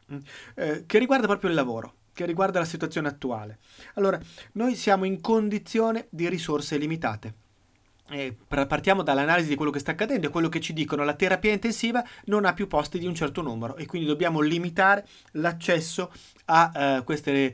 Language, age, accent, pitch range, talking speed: Italian, 30-49, native, 145-200 Hz, 170 wpm